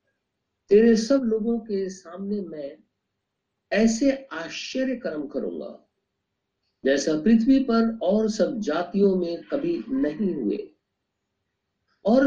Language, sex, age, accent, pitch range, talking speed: Hindi, male, 50-69, native, 150-250 Hz, 105 wpm